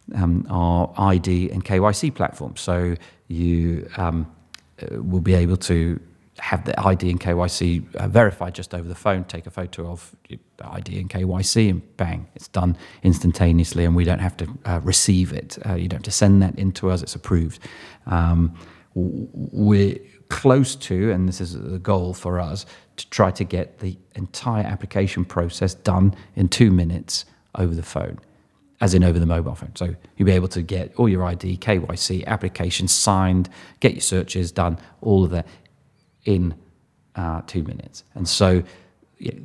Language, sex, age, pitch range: English, male, 30-49, 90-100 Hz